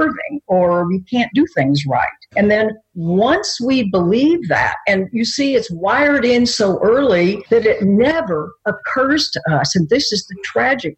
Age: 50-69